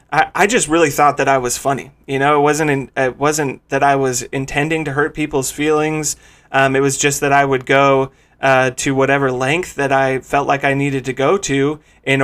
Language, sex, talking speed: English, male, 220 wpm